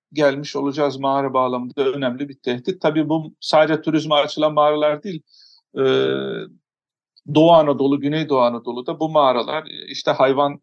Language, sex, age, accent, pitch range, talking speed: Turkish, male, 50-69, native, 130-155 Hz, 130 wpm